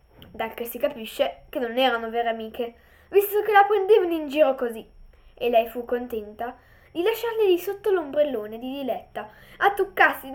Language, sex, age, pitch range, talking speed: Italian, female, 10-29, 240-350 Hz, 170 wpm